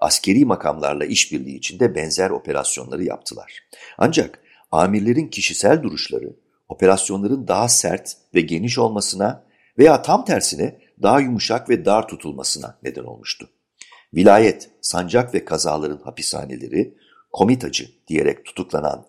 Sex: male